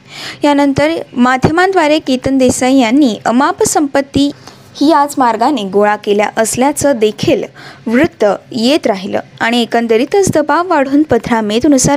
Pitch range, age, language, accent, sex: 235-340 Hz, 20-39, Marathi, native, female